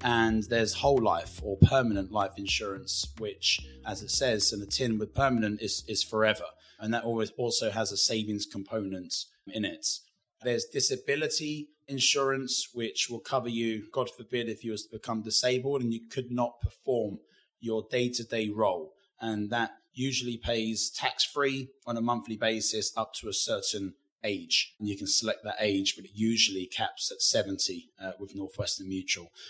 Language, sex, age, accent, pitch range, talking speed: English, male, 20-39, British, 100-130 Hz, 165 wpm